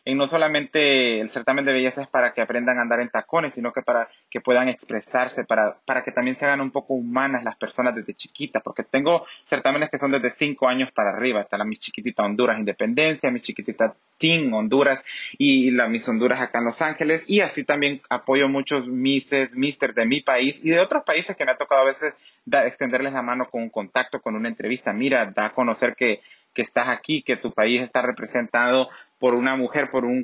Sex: male